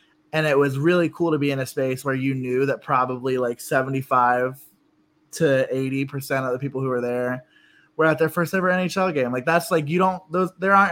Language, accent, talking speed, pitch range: English, American, 220 wpm, 130-160 Hz